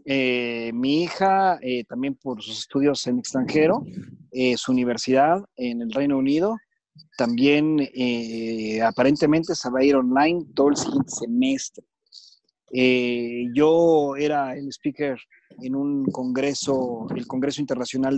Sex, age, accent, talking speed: male, 40-59, Mexican, 130 wpm